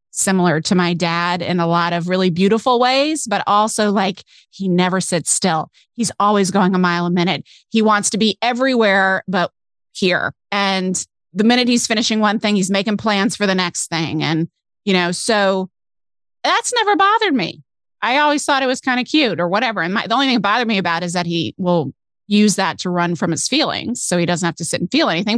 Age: 30-49